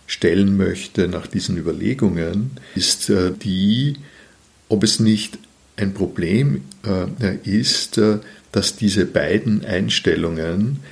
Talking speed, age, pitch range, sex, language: 95 wpm, 50-69, 90-110 Hz, male, German